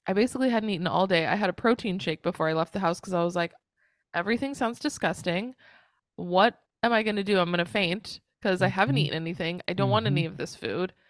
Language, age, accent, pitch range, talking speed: English, 20-39, American, 170-205 Hz, 245 wpm